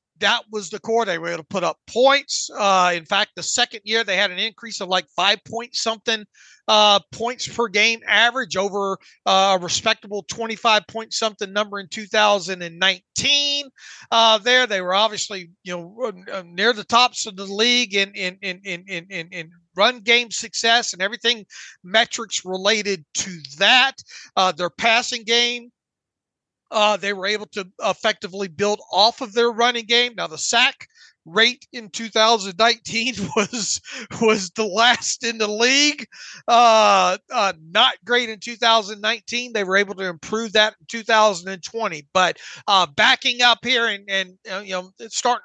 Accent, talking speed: American, 165 wpm